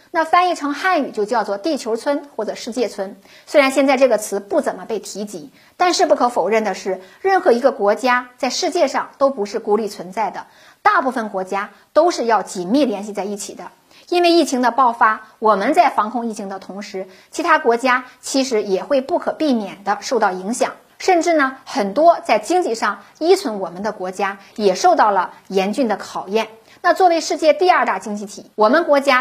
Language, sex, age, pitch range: Chinese, female, 50-69, 205-300 Hz